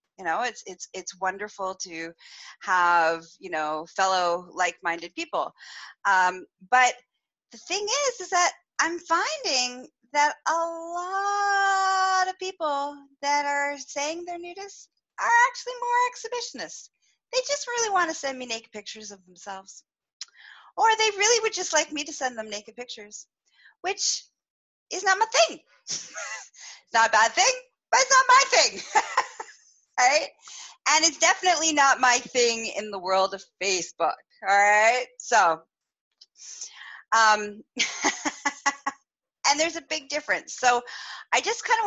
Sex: female